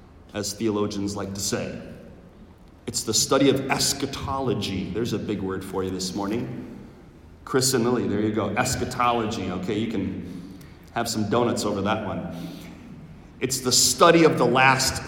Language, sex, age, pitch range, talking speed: English, male, 40-59, 95-125 Hz, 160 wpm